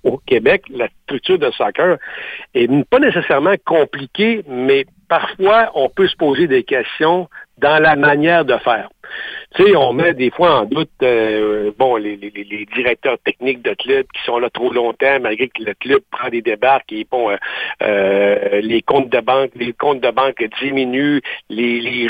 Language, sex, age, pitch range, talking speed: French, male, 60-79, 125-190 Hz, 180 wpm